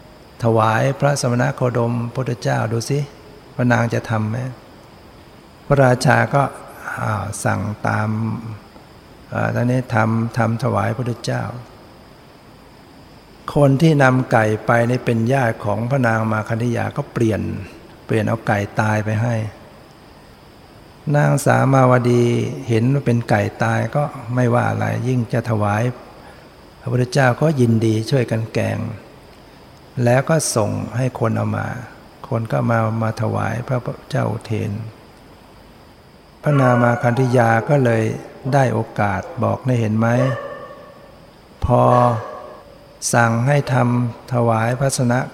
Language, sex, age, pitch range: Thai, male, 60-79, 110-130 Hz